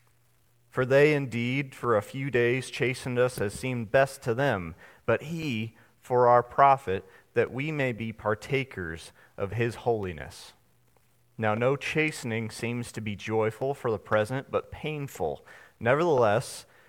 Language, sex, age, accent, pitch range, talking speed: English, male, 40-59, American, 95-120 Hz, 140 wpm